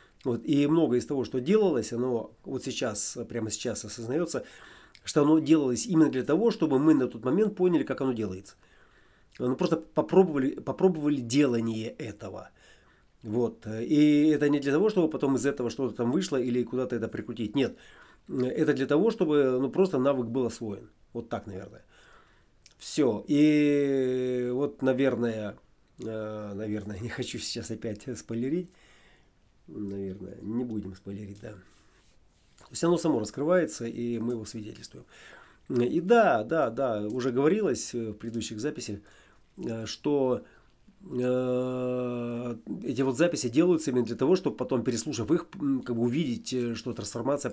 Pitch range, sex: 115-145 Hz, male